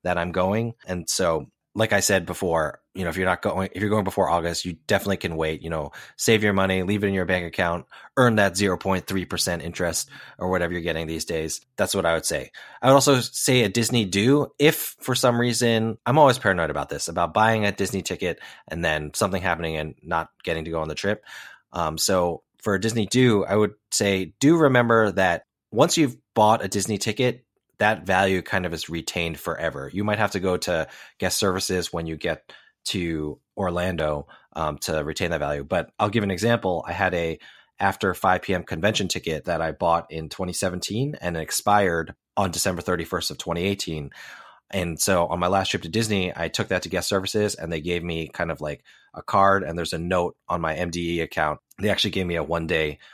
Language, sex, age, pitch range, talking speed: English, male, 20-39, 85-105 Hz, 215 wpm